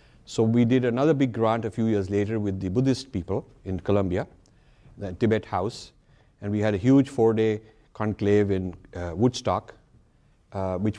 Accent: Indian